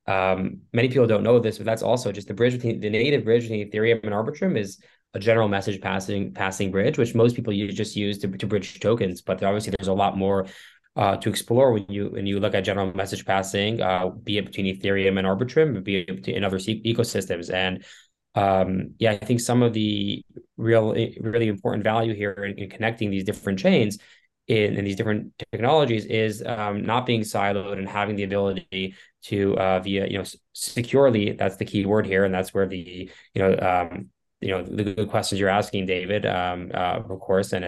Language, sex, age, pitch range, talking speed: English, male, 20-39, 95-110 Hz, 210 wpm